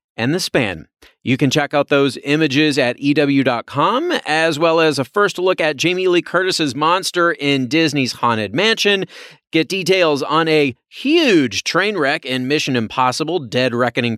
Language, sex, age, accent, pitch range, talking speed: English, male, 40-59, American, 125-160 Hz, 160 wpm